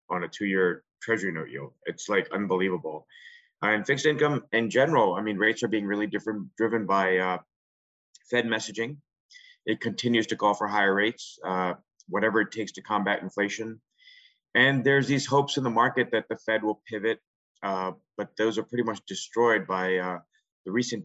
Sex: male